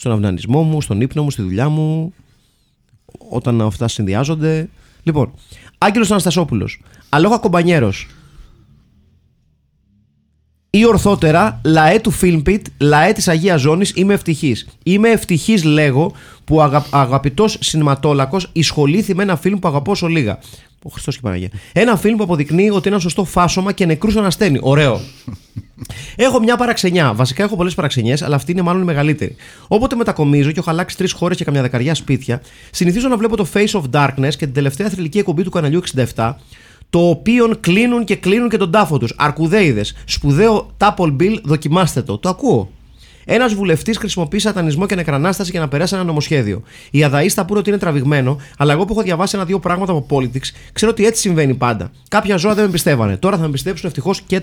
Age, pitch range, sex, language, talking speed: 30-49, 140-200 Hz, male, Greek, 175 wpm